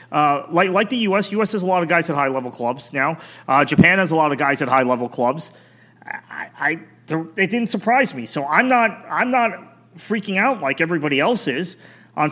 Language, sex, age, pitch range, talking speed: English, male, 30-49, 125-165 Hz, 205 wpm